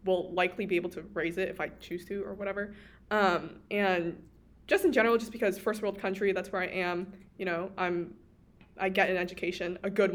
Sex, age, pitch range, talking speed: female, 20-39, 180-210 Hz, 215 wpm